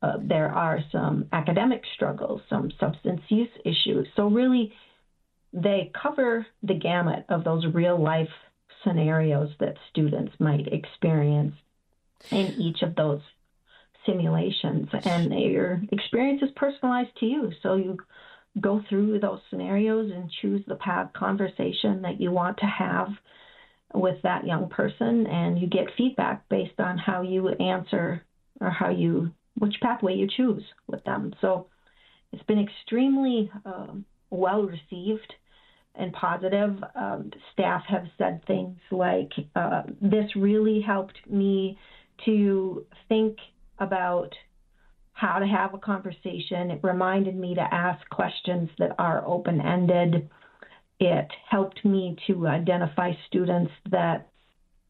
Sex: female